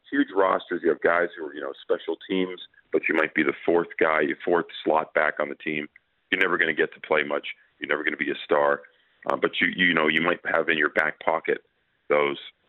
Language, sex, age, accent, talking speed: English, male, 40-59, American, 250 wpm